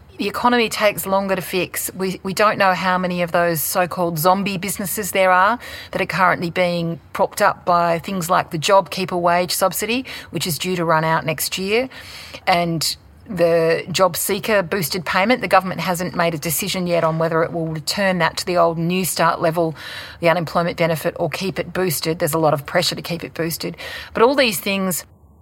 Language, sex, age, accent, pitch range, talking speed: English, female, 40-59, Australian, 165-195 Hz, 200 wpm